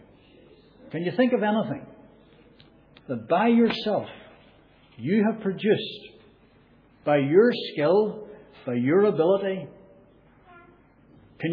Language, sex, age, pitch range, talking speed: English, male, 60-79, 125-195 Hz, 95 wpm